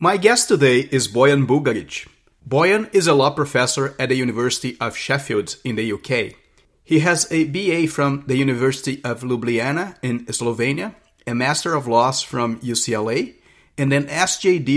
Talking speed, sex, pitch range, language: 160 wpm, male, 120-145 Hz, English